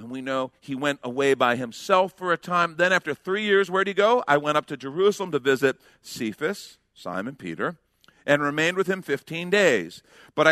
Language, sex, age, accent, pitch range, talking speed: English, male, 50-69, American, 130-175 Hz, 205 wpm